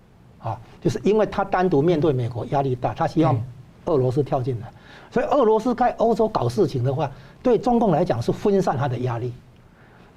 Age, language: 60-79, Chinese